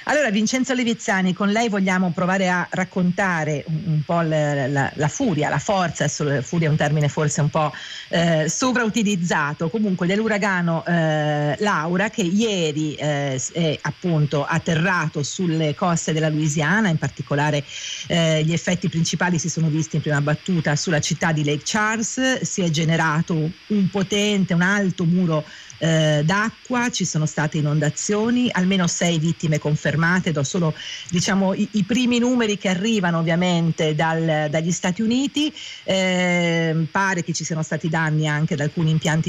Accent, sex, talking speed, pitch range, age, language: native, female, 155 wpm, 155-190 Hz, 50-69, Italian